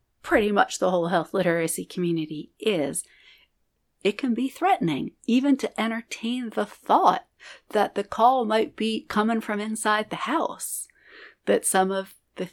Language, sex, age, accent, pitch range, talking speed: English, female, 40-59, American, 160-220 Hz, 150 wpm